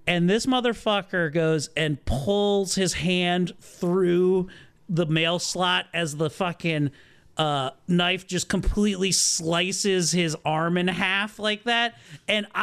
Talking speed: 130 wpm